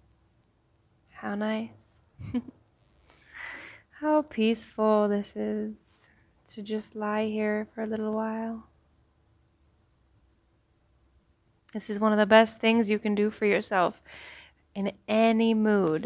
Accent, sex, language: American, female, English